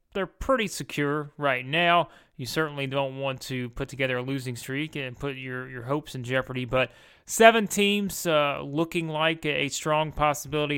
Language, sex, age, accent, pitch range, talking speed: English, male, 30-49, American, 130-155 Hz, 175 wpm